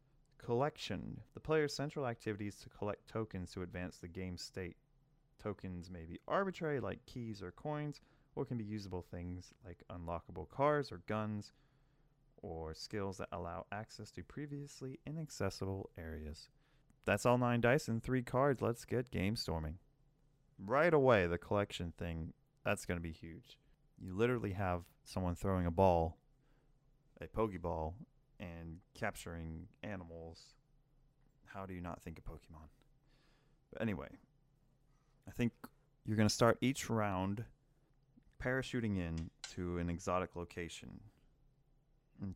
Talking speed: 135 wpm